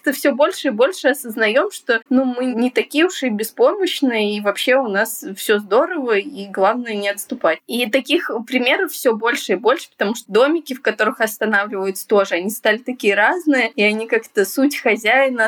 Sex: female